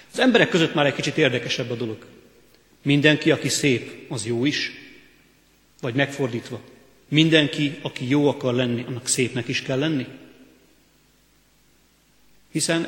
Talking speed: 130 wpm